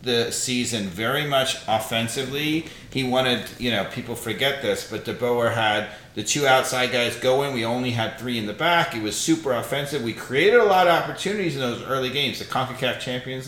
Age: 40-59